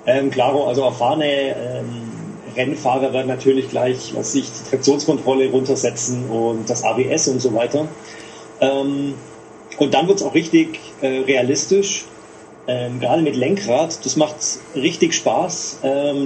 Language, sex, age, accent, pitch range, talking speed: German, male, 40-59, German, 115-155 Hz, 140 wpm